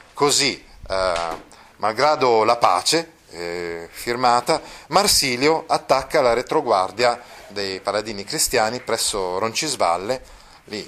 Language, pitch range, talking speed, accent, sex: Italian, 105-140 Hz, 95 wpm, native, male